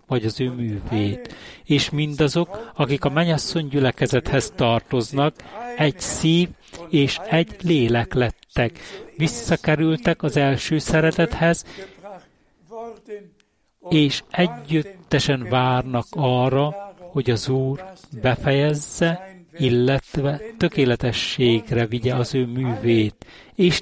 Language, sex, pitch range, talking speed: Hungarian, male, 125-170 Hz, 90 wpm